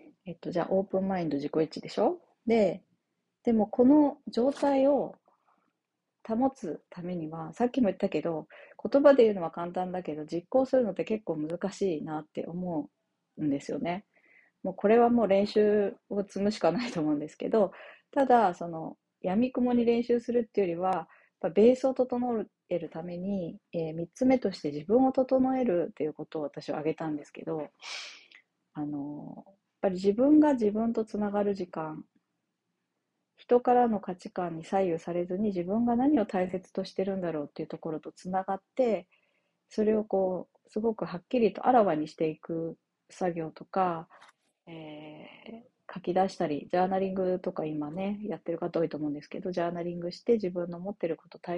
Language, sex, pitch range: Japanese, female, 170-225 Hz